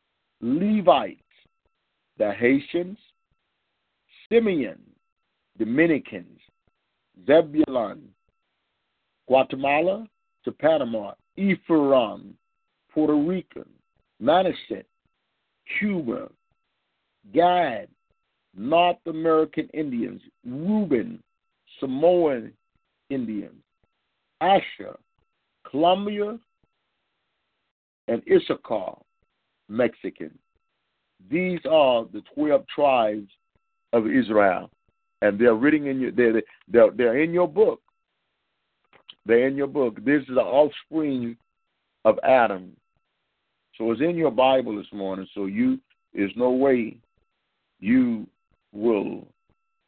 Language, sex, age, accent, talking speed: English, male, 50-69, American, 80 wpm